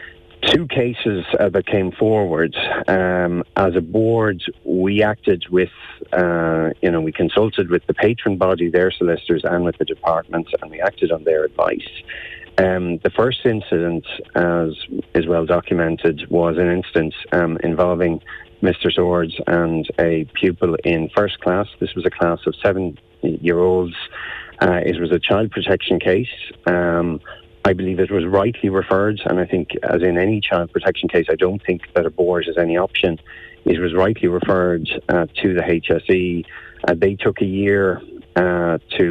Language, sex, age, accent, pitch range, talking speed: English, male, 40-59, Irish, 85-100 Hz, 170 wpm